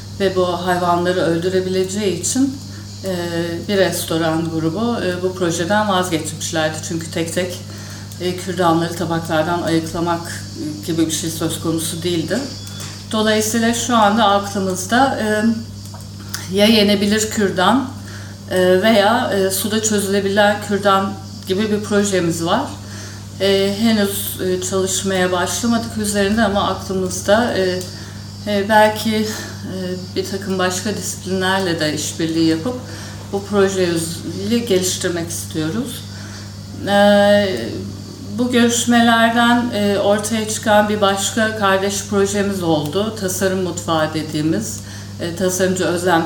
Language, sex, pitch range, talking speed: Turkish, female, 150-200 Hz, 100 wpm